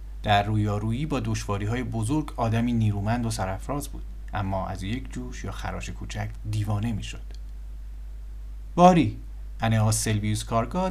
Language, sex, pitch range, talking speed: Persian, male, 100-130 Hz, 130 wpm